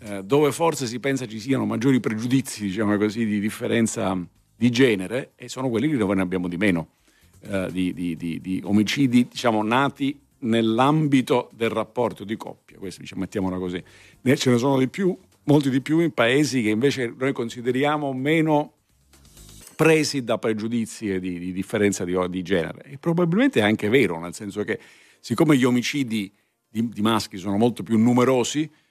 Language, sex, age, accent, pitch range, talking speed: Italian, male, 50-69, native, 95-125 Hz, 165 wpm